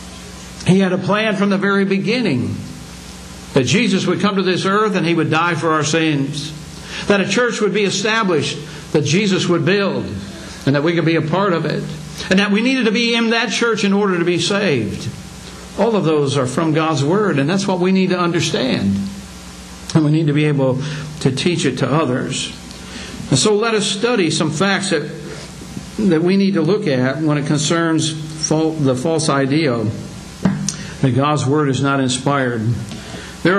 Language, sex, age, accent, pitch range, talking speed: English, male, 60-79, American, 150-195 Hz, 195 wpm